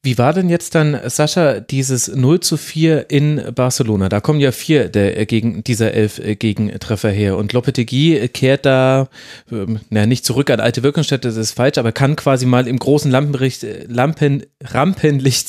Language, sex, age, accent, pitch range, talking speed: German, male, 30-49, German, 120-150 Hz, 170 wpm